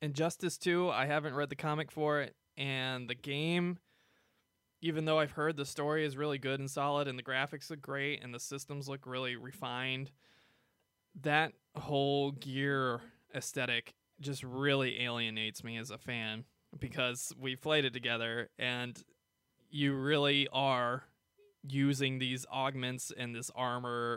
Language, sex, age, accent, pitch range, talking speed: English, male, 20-39, American, 125-145 Hz, 150 wpm